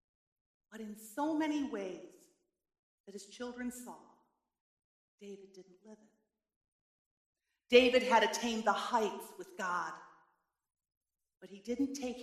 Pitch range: 185-255 Hz